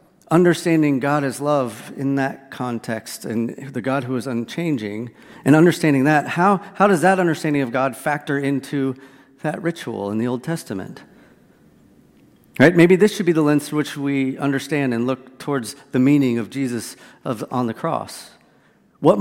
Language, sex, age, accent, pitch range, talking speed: English, male, 40-59, American, 130-170 Hz, 170 wpm